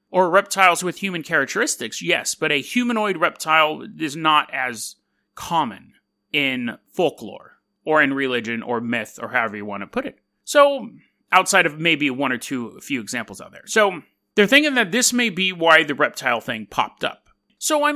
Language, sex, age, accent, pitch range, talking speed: English, male, 30-49, American, 145-210 Hz, 185 wpm